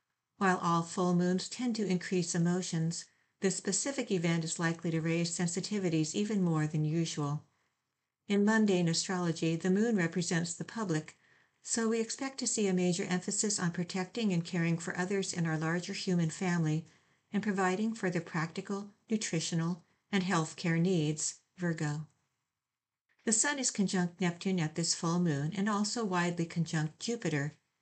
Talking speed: 155 wpm